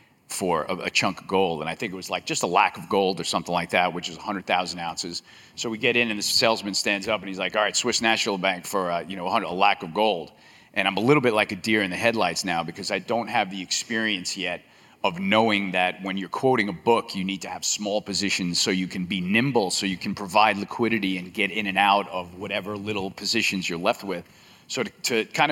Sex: male